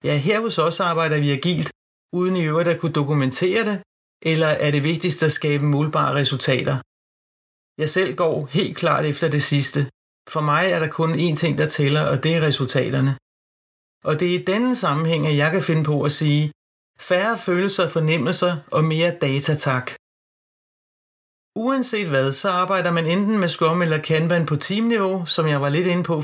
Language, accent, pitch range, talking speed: Danish, native, 150-185 Hz, 180 wpm